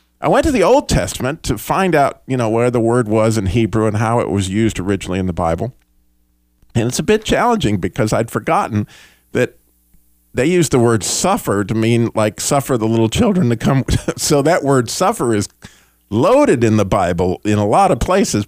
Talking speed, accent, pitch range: 205 wpm, American, 90-120 Hz